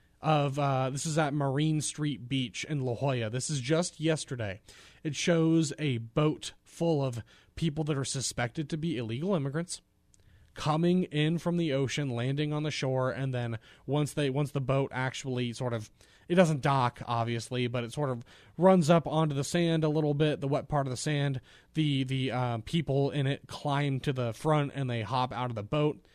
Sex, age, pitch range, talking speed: male, 30-49, 125-155 Hz, 200 wpm